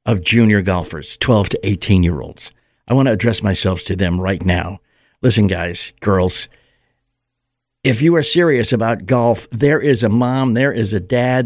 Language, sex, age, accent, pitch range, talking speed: English, male, 60-79, American, 100-125 Hz, 170 wpm